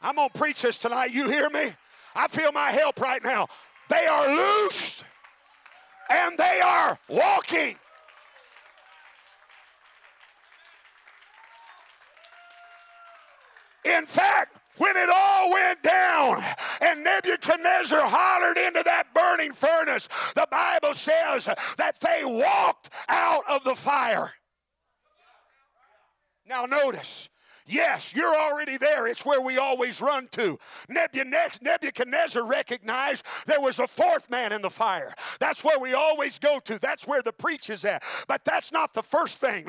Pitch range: 265-335 Hz